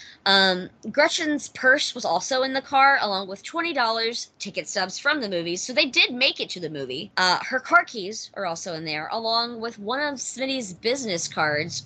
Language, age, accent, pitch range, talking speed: English, 20-39, American, 180-265 Hz, 195 wpm